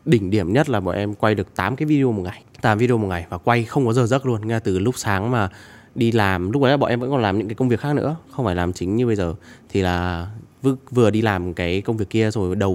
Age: 20-39